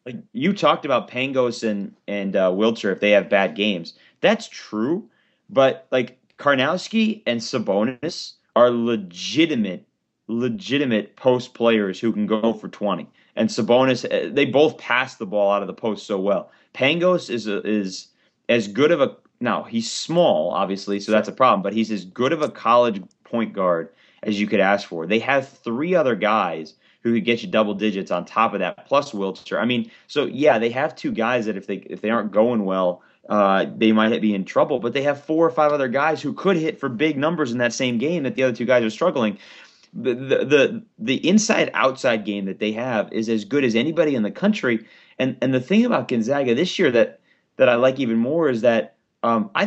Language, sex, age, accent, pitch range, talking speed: English, male, 30-49, American, 105-140 Hz, 210 wpm